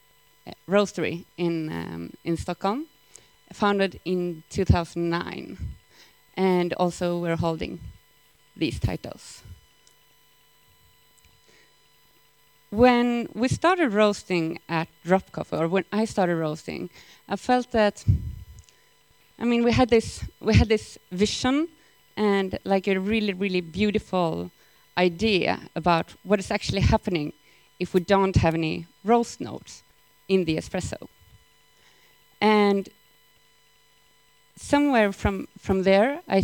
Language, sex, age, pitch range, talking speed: English, female, 30-49, 165-205 Hz, 105 wpm